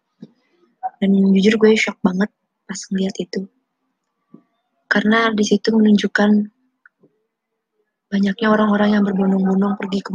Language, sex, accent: Indonesian, female, native